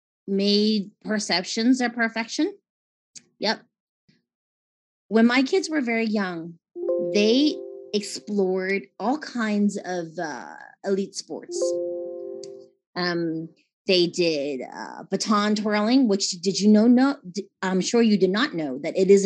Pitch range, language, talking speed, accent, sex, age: 175-225 Hz, English, 120 wpm, American, female, 30-49